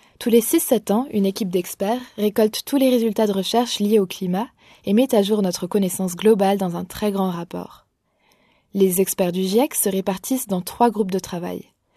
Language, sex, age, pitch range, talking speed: French, female, 20-39, 190-230 Hz, 200 wpm